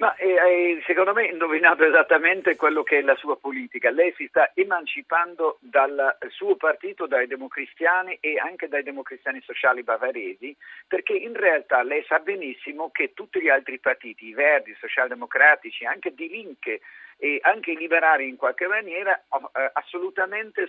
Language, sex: Italian, male